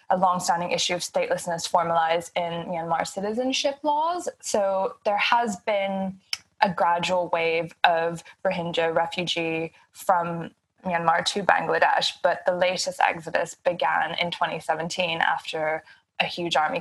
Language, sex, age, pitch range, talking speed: English, female, 20-39, 170-185 Hz, 125 wpm